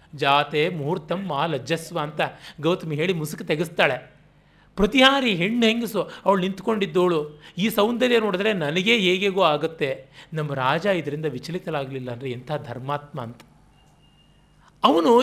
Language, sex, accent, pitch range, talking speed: Kannada, male, native, 150-220 Hz, 115 wpm